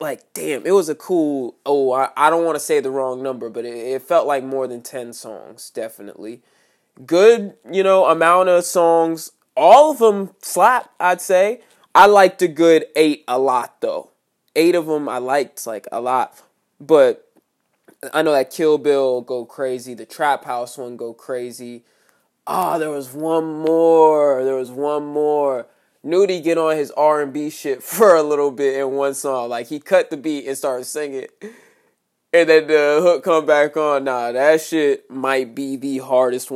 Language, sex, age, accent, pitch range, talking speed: English, male, 20-39, American, 130-165 Hz, 185 wpm